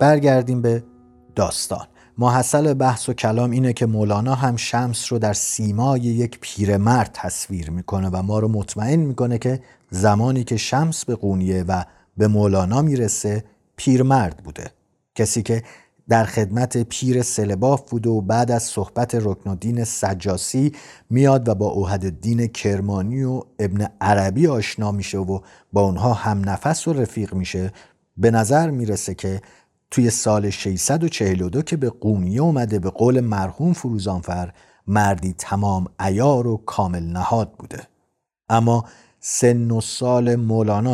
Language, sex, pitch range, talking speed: Persian, male, 95-125 Hz, 140 wpm